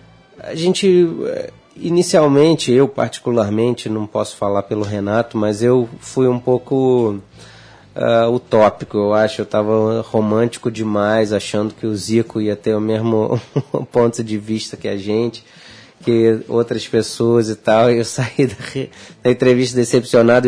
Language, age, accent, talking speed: Portuguese, 20-39, Brazilian, 145 wpm